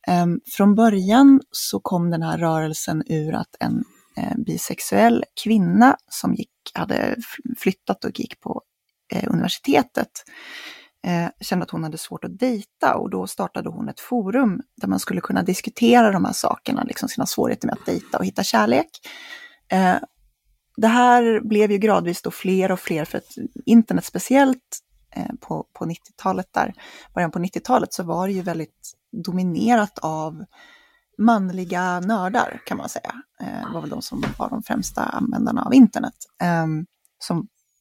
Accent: native